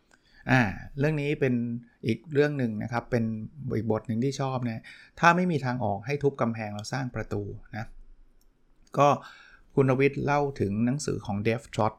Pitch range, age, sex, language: 110-135 Hz, 20-39, male, Thai